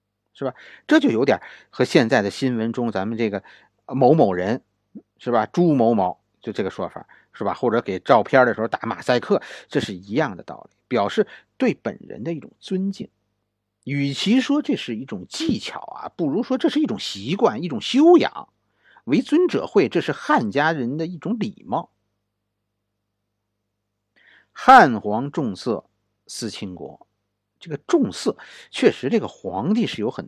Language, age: Chinese, 50-69